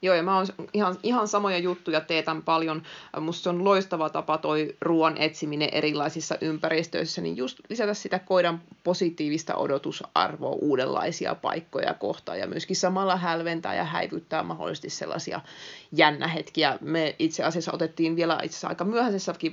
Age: 30-49